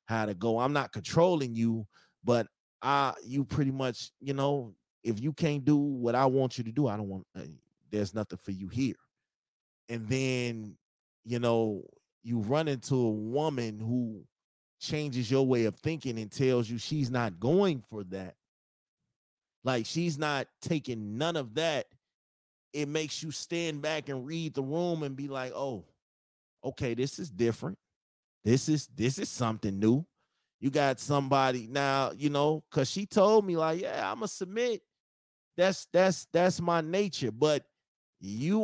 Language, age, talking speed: English, 30-49, 165 wpm